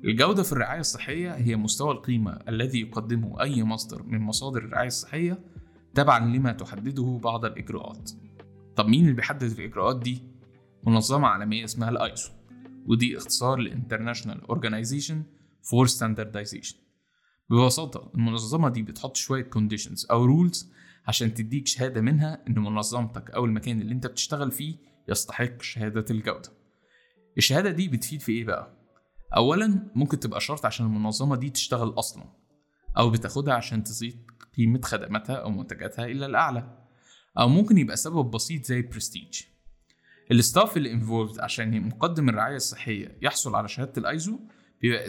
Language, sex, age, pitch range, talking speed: Arabic, male, 20-39, 110-140 Hz, 140 wpm